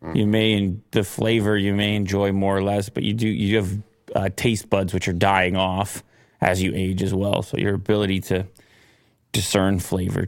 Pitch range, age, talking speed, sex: 100-120 Hz, 30-49, 195 wpm, male